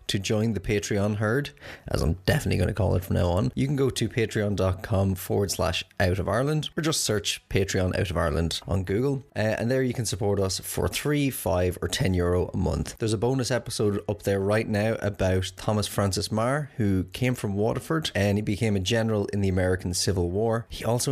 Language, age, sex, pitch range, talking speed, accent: English, 20-39, male, 95-120 Hz, 220 wpm, Irish